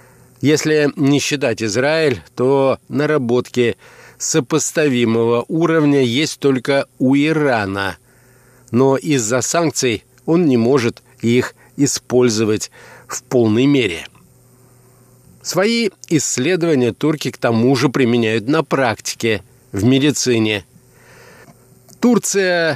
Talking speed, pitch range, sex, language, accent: 90 wpm, 120-150 Hz, male, Russian, native